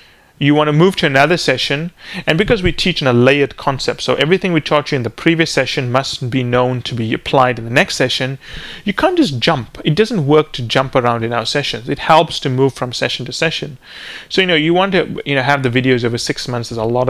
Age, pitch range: 30-49, 125-155 Hz